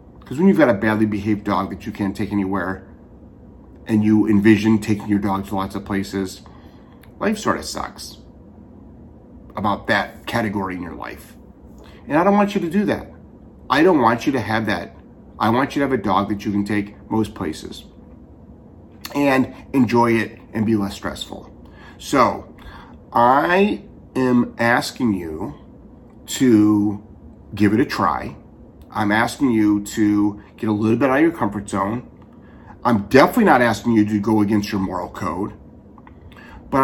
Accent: American